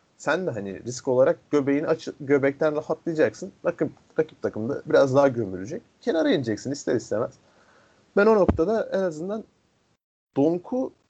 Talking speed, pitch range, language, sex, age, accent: 140 wpm, 115-175 Hz, Turkish, male, 40-59, native